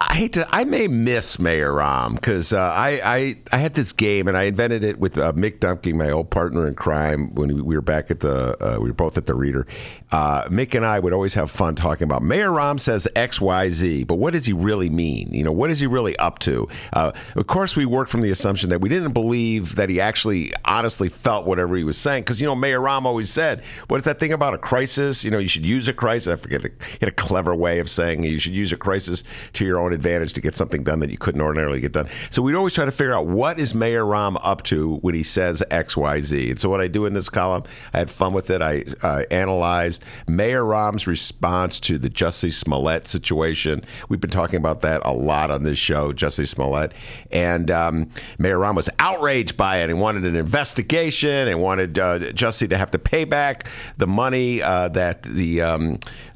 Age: 50-69